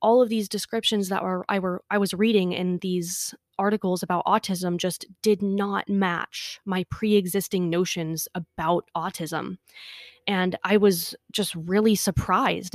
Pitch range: 180-215 Hz